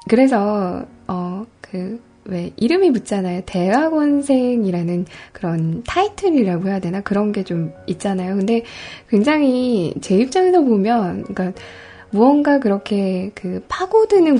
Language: Korean